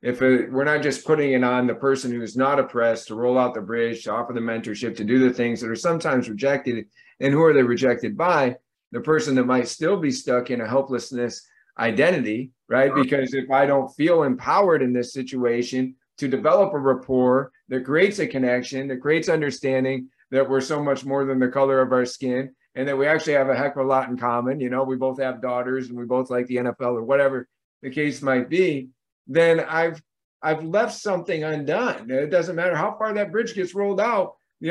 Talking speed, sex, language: 220 wpm, male, English